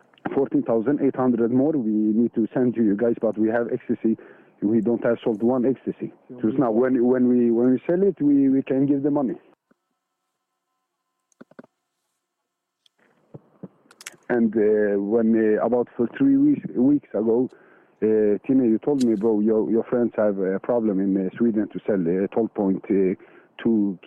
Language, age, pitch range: Swedish, 50-69, 100-120 Hz